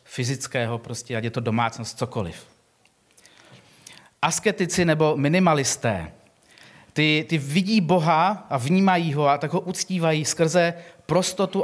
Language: Czech